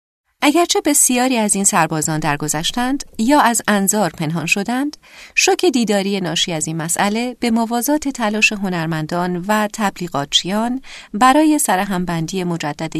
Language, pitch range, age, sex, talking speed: Persian, 170-250 Hz, 40-59, female, 125 wpm